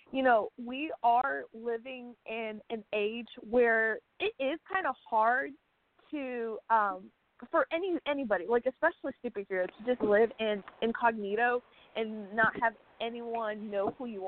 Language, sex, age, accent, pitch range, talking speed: English, female, 20-39, American, 215-270 Hz, 145 wpm